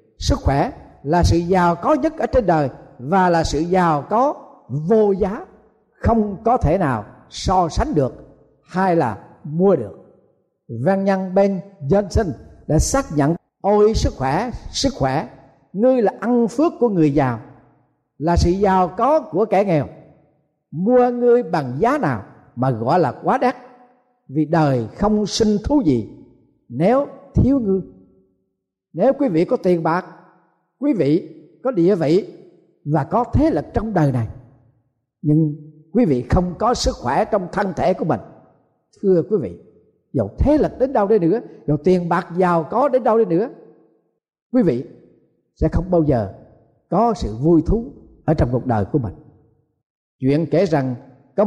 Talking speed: 165 wpm